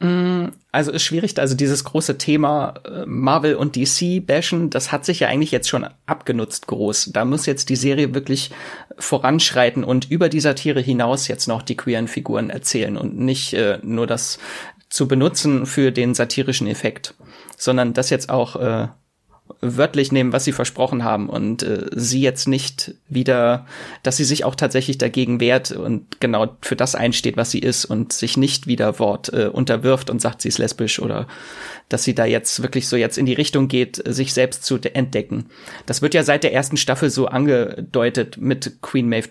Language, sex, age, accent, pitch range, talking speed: German, male, 30-49, German, 125-145 Hz, 185 wpm